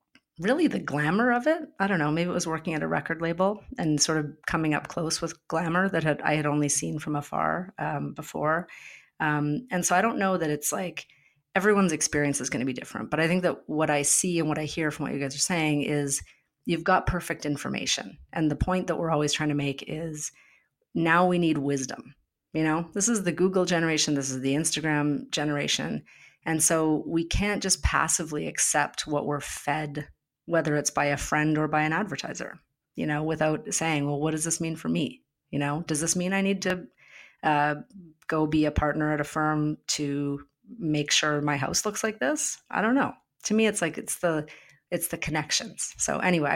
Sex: female